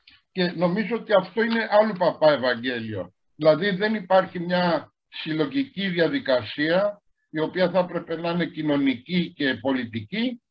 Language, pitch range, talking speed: Greek, 155-215 Hz, 130 wpm